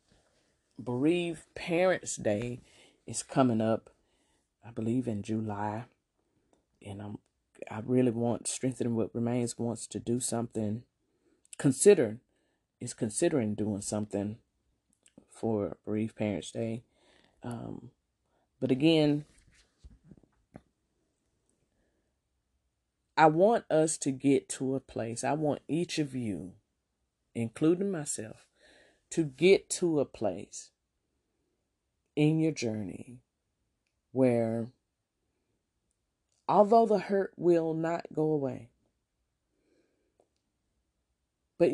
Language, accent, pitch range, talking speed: English, American, 105-155 Hz, 95 wpm